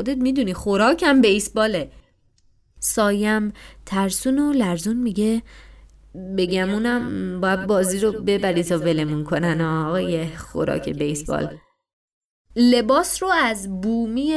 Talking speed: 105 wpm